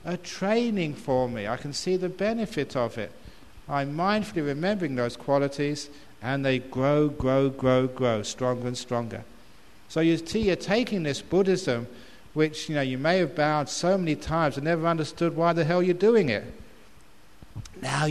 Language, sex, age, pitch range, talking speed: English, male, 60-79, 125-170 Hz, 170 wpm